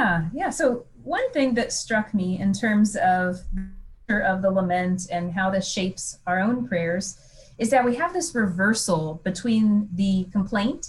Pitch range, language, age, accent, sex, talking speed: 180-230 Hz, English, 30-49, American, female, 160 wpm